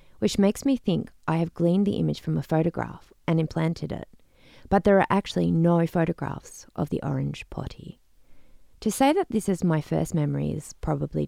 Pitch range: 155-195 Hz